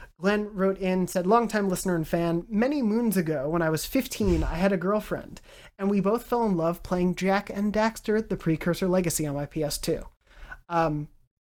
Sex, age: male, 30-49